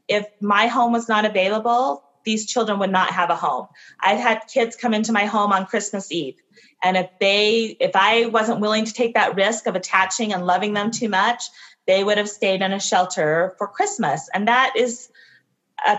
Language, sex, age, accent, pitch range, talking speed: English, female, 30-49, American, 185-235 Hz, 205 wpm